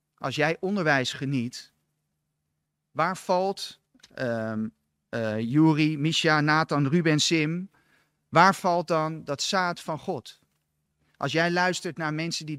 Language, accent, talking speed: Dutch, Dutch, 125 wpm